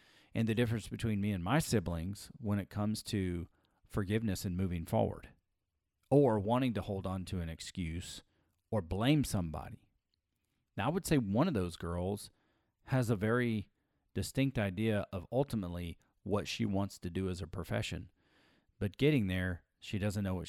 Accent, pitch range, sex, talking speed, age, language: American, 90-115 Hz, male, 165 wpm, 40-59, English